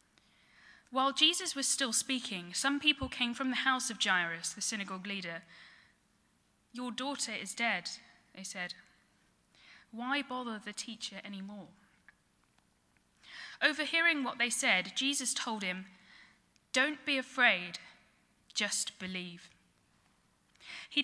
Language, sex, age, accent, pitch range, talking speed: English, female, 10-29, British, 195-270 Hz, 115 wpm